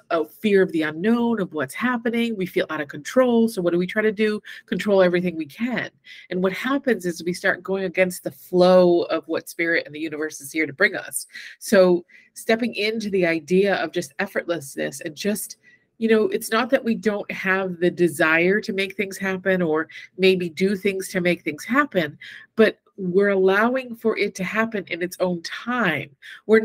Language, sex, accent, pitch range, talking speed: English, female, American, 175-220 Hz, 200 wpm